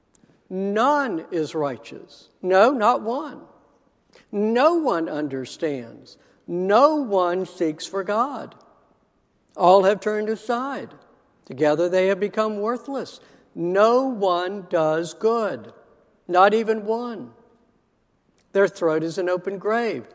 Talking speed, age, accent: 105 wpm, 60-79, American